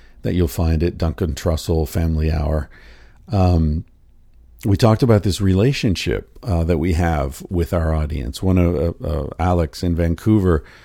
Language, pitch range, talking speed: English, 85-105 Hz, 155 wpm